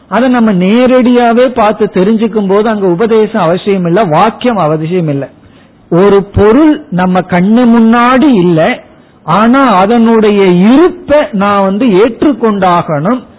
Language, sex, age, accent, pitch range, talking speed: Tamil, male, 50-69, native, 170-235 Hz, 110 wpm